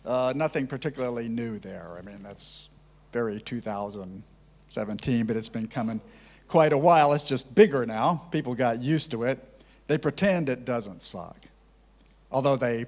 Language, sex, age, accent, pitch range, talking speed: English, male, 50-69, American, 115-160 Hz, 155 wpm